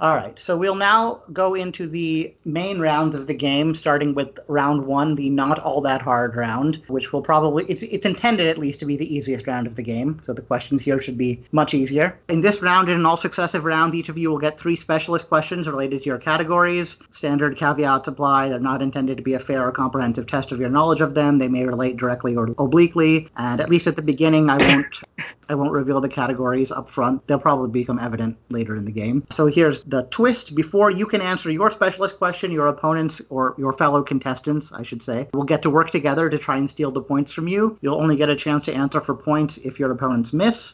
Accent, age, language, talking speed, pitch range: American, 30-49, English, 235 wpm, 135-160 Hz